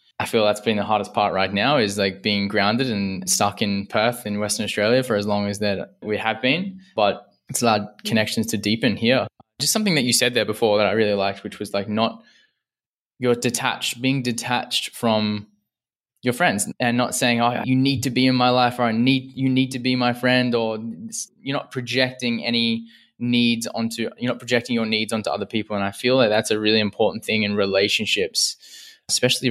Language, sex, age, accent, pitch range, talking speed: English, male, 10-29, Australian, 105-120 Hz, 215 wpm